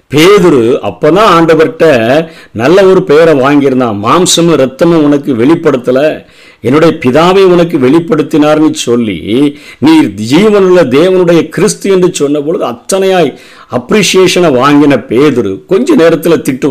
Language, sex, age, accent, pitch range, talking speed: Tamil, male, 50-69, native, 125-170 Hz, 100 wpm